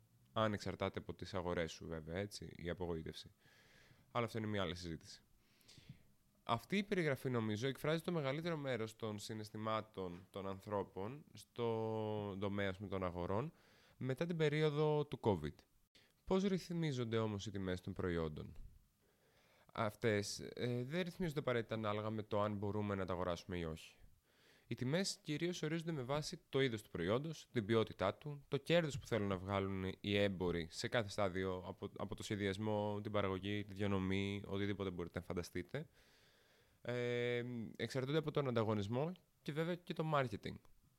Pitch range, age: 95-130 Hz, 20-39